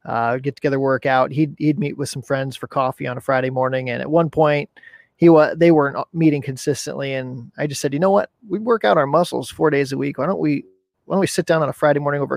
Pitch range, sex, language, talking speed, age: 130-160 Hz, male, English, 270 wpm, 30-49